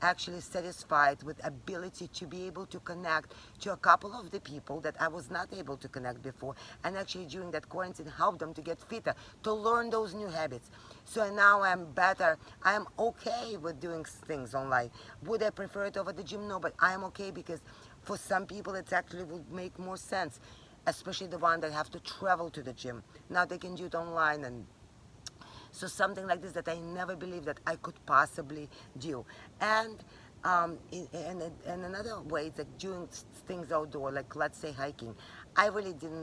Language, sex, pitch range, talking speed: English, female, 140-180 Hz, 200 wpm